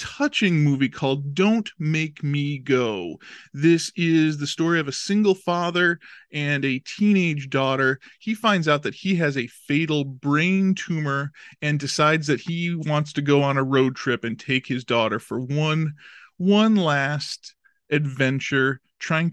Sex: male